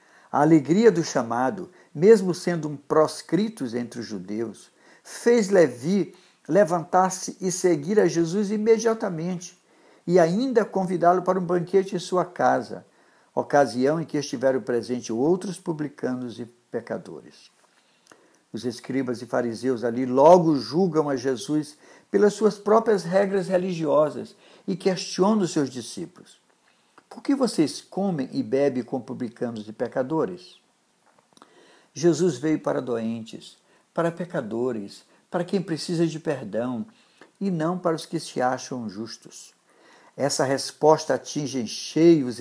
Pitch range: 130-185 Hz